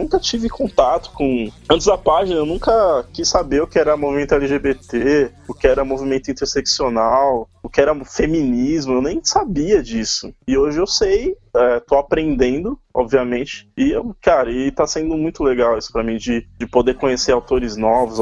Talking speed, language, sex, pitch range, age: 175 wpm, Portuguese, male, 125-150 Hz, 20-39